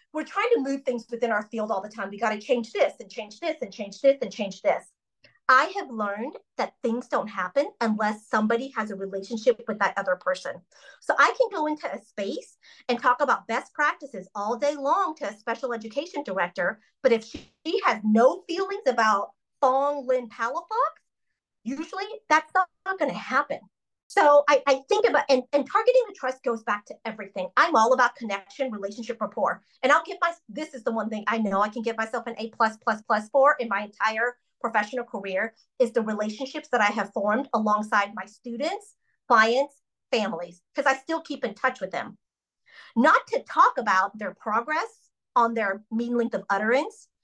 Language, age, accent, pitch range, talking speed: English, 40-59, American, 215-295 Hz, 195 wpm